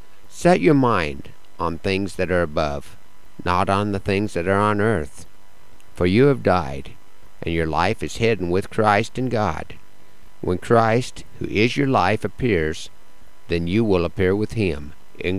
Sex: male